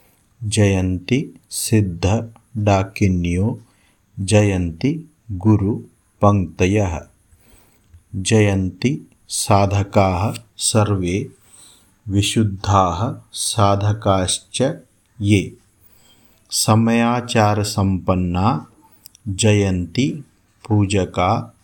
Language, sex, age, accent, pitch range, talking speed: Hindi, male, 50-69, native, 95-110 Hz, 35 wpm